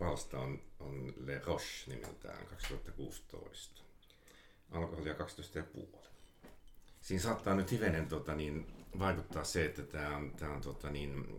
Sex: male